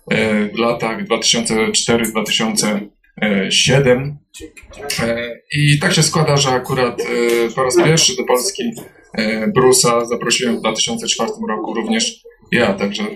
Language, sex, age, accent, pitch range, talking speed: Polish, male, 20-39, native, 115-160 Hz, 100 wpm